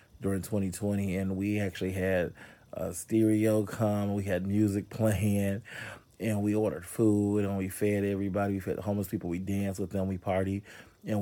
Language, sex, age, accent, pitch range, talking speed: English, male, 30-49, American, 95-105 Hz, 170 wpm